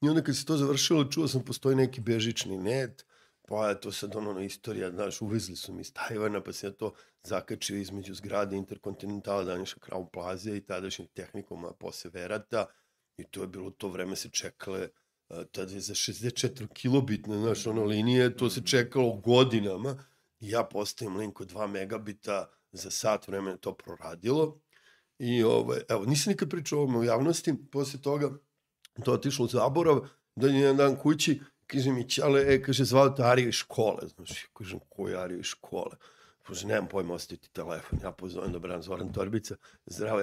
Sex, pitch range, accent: male, 100-130 Hz, native